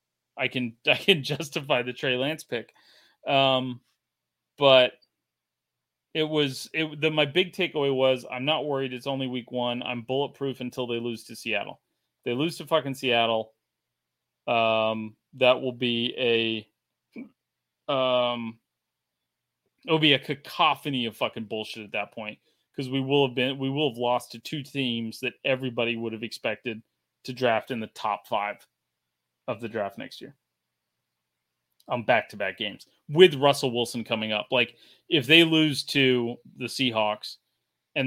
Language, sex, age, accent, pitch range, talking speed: English, male, 30-49, American, 110-135 Hz, 155 wpm